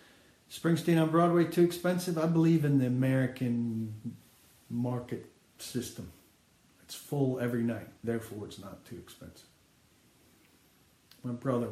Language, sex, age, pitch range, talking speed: English, male, 50-69, 115-140 Hz, 120 wpm